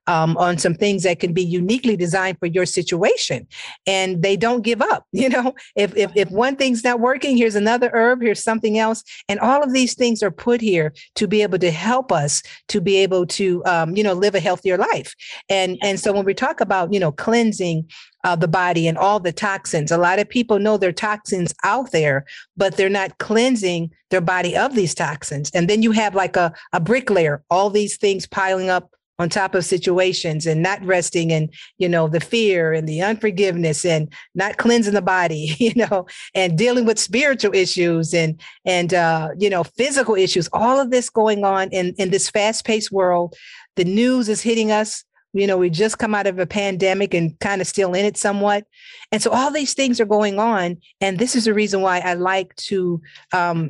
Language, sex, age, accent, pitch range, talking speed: English, female, 50-69, American, 180-220 Hz, 215 wpm